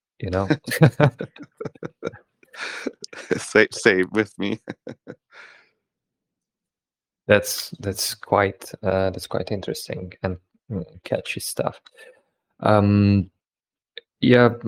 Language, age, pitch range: Russian, 20-39, 95-120 Hz